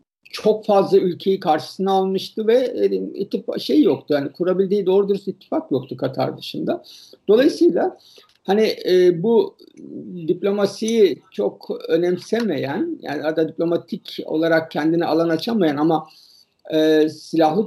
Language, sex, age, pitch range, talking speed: Turkish, male, 50-69, 160-240 Hz, 105 wpm